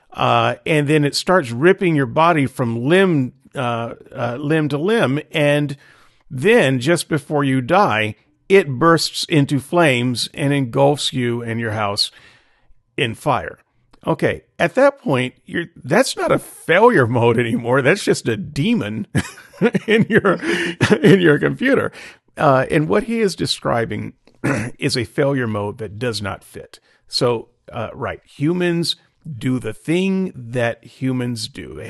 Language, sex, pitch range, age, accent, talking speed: English, male, 120-160 Hz, 50-69, American, 145 wpm